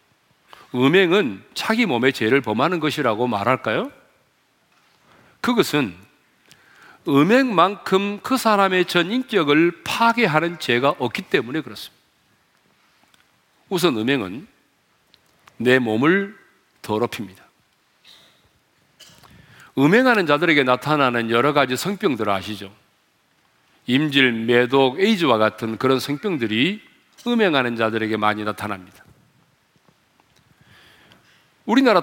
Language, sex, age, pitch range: Korean, male, 40-59, 125-200 Hz